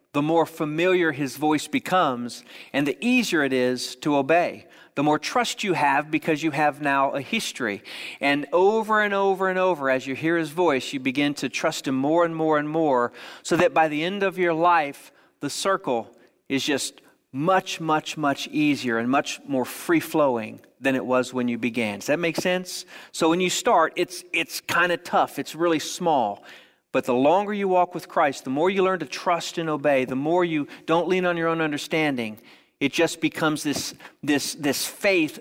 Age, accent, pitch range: 40-59, American, 140-180 Hz